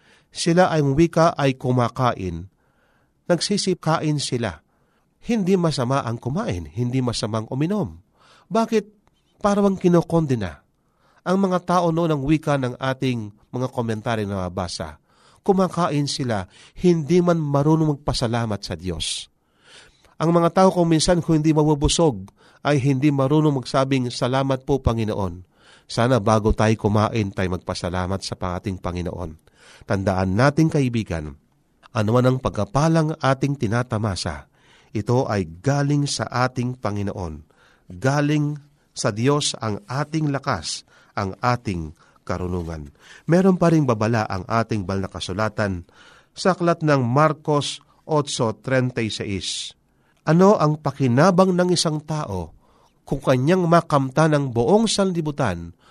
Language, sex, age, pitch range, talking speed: Filipino, male, 40-59, 105-155 Hz, 115 wpm